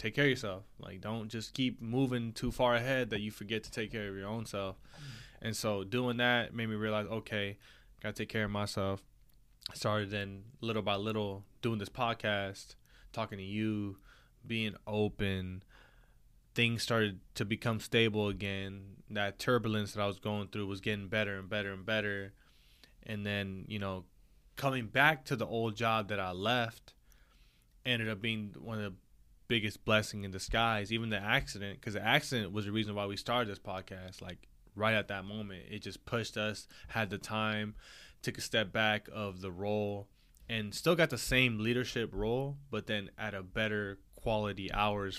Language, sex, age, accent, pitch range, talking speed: English, male, 20-39, American, 100-115 Hz, 185 wpm